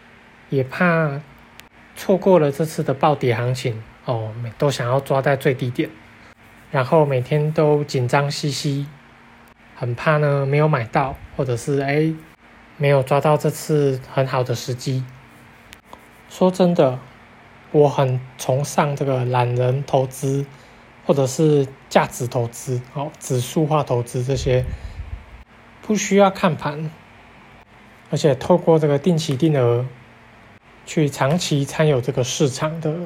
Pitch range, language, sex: 125-155 Hz, Chinese, male